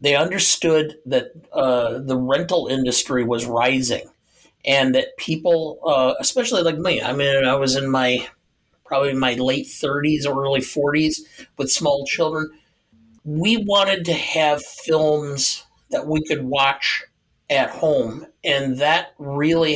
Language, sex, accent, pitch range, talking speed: English, male, American, 130-165 Hz, 140 wpm